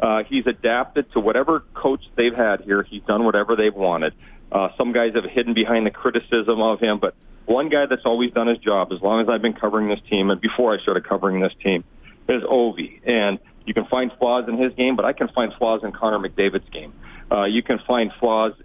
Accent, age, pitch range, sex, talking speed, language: American, 40-59, 105-125 Hz, male, 230 wpm, English